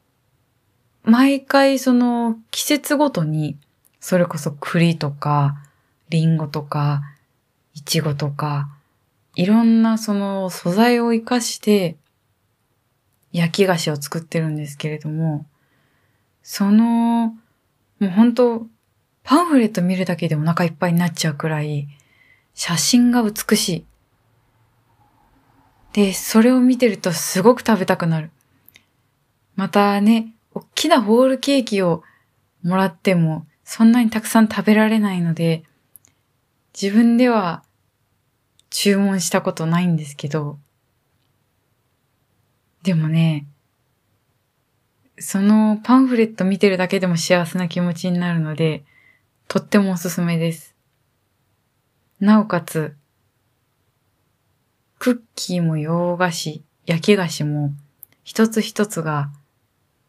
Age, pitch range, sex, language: 20-39, 135-205 Hz, female, Japanese